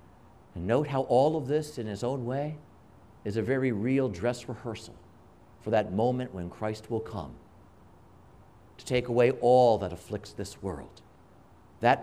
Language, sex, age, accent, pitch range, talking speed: English, male, 50-69, American, 90-120 Hz, 160 wpm